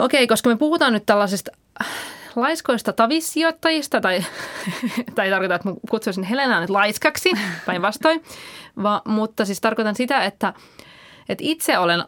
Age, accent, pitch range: 20-39, native, 195-260 Hz